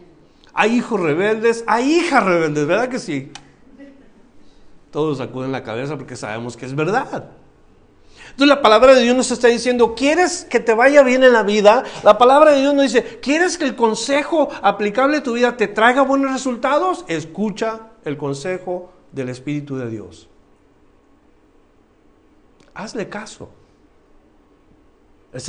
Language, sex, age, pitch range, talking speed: Spanish, male, 50-69, 170-245 Hz, 145 wpm